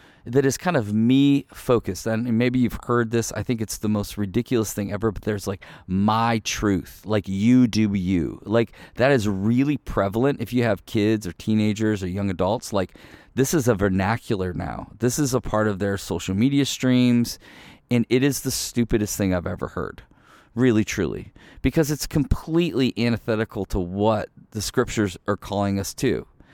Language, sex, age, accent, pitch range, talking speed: English, male, 40-59, American, 100-125 Hz, 180 wpm